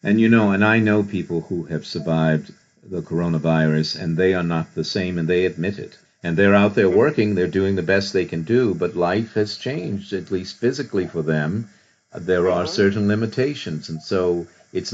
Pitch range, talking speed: 90-115 Hz, 200 wpm